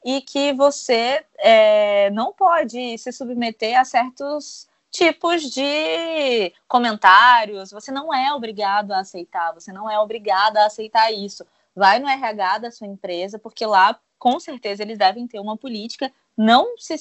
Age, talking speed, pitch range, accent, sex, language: 20-39, 150 wpm, 215-290 Hz, Brazilian, female, Portuguese